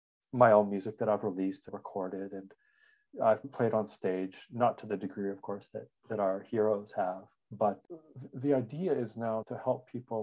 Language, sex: English, male